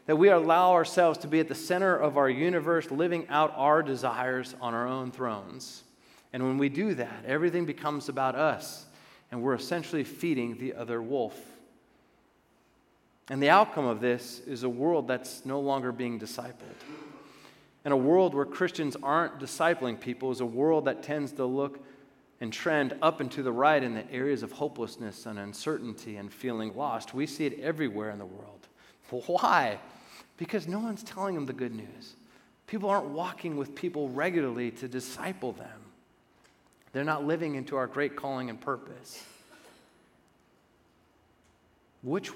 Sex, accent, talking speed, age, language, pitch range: male, American, 165 wpm, 30-49, English, 125-155 Hz